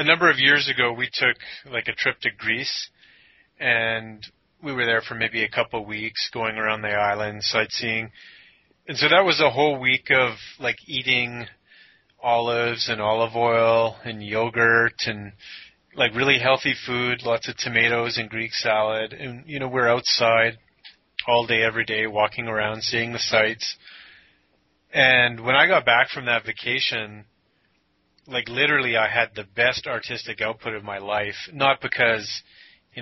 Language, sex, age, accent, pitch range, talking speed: English, male, 30-49, American, 110-125 Hz, 160 wpm